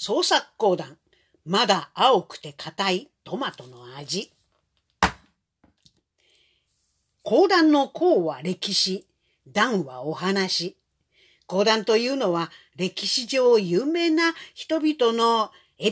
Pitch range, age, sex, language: 175-275 Hz, 50-69, female, Japanese